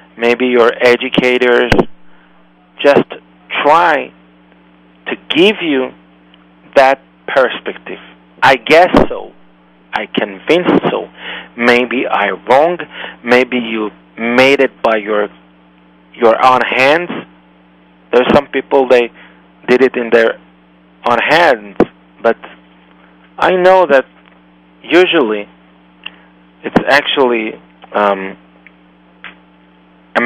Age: 40-59